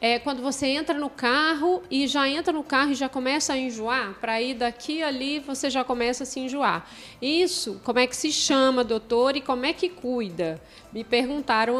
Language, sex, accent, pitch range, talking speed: Portuguese, female, Brazilian, 230-305 Hz, 205 wpm